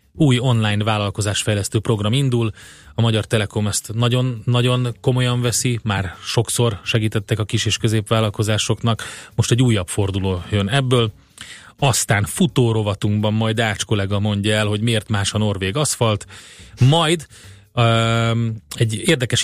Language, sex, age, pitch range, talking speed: Hungarian, male, 30-49, 105-125 Hz, 130 wpm